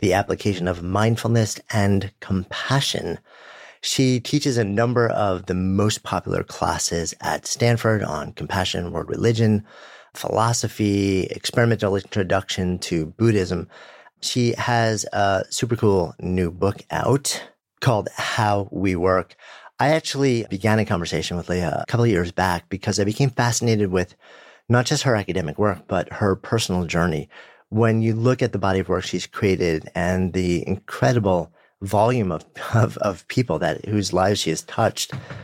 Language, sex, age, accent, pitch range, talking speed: English, male, 40-59, American, 90-115 Hz, 150 wpm